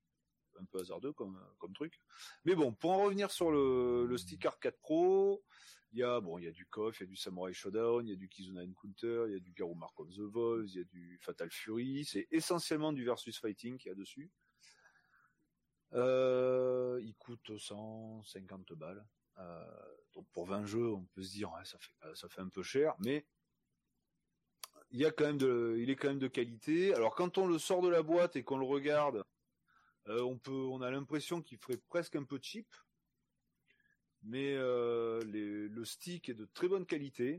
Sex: male